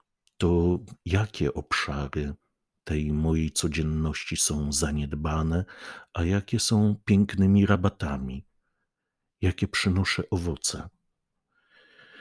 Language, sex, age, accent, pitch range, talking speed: Polish, male, 50-69, native, 75-100 Hz, 80 wpm